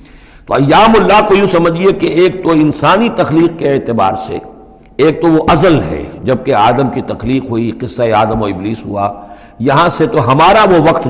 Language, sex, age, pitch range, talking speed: Urdu, male, 60-79, 115-170 Hz, 195 wpm